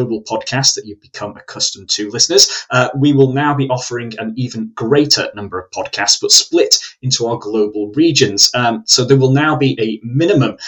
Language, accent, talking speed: English, British, 190 wpm